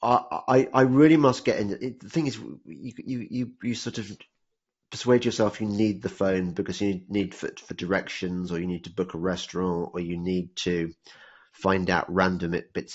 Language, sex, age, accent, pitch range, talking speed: English, male, 30-49, British, 90-115 Hz, 200 wpm